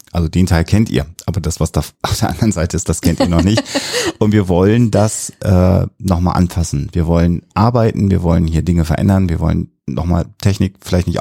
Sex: male